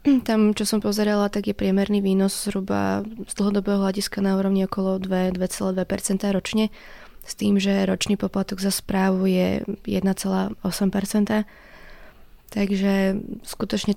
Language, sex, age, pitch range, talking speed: Slovak, female, 20-39, 190-210 Hz, 120 wpm